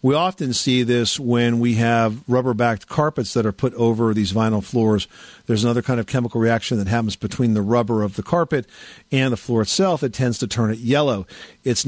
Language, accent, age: English, American, 50-69